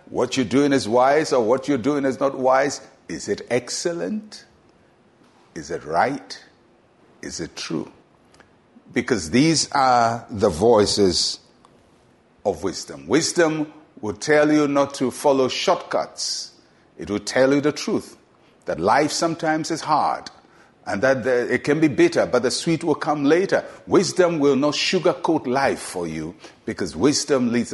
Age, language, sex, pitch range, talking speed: 60-79, English, male, 125-170 Hz, 150 wpm